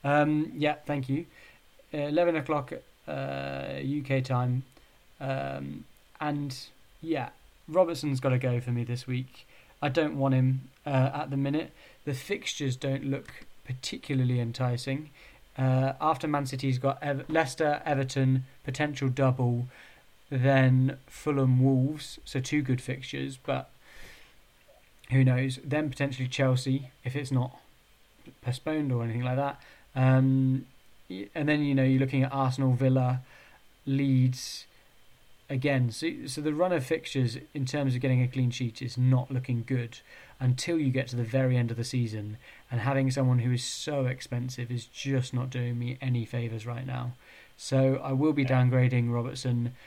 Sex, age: male, 20-39